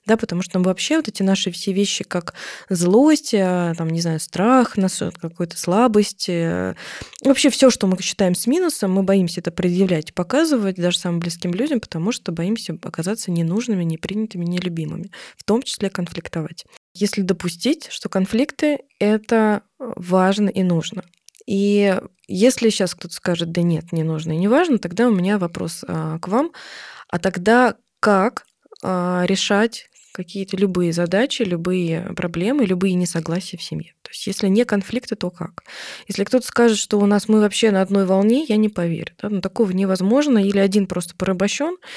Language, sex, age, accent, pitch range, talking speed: Russian, female, 20-39, native, 180-215 Hz, 160 wpm